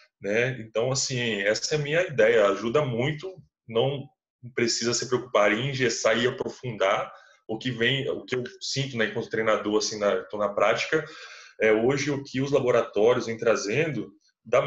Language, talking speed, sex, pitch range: Portuguese, 170 wpm, male, 115-165 Hz